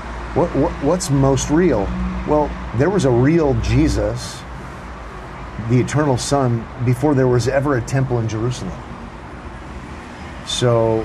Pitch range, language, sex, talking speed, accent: 100-125 Hz, English, male, 125 wpm, American